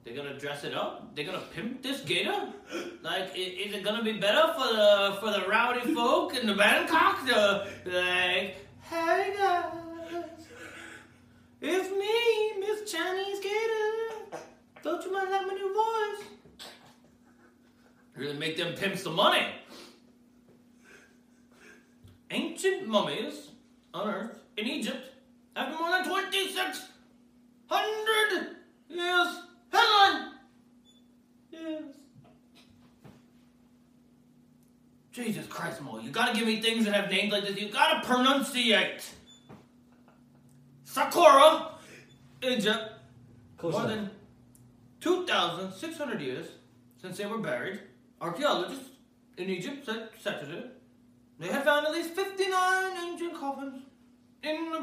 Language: English